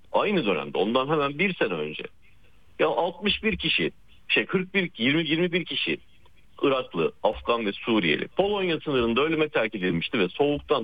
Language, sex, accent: Turkish, male, native